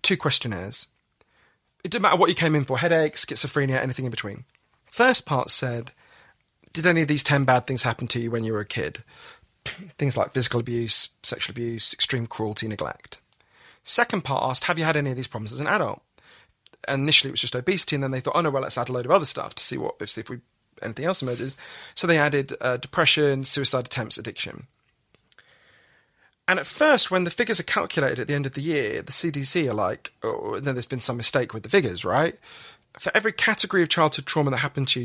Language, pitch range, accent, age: English, 125-170 Hz, British, 40-59